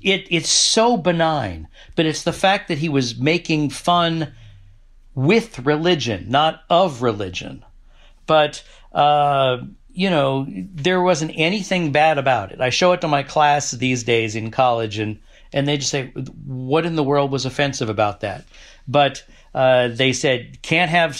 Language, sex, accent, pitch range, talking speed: English, male, American, 120-155 Hz, 160 wpm